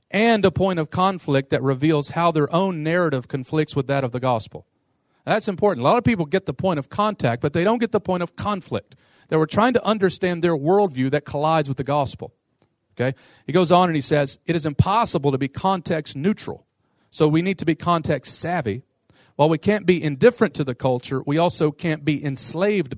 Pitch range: 130-170 Hz